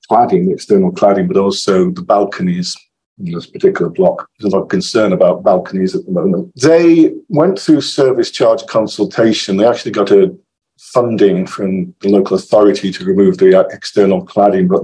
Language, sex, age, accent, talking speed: English, male, 50-69, British, 170 wpm